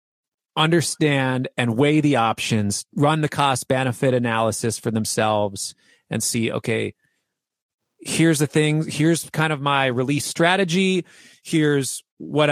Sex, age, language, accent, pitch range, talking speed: male, 30-49, English, American, 115-160 Hz, 120 wpm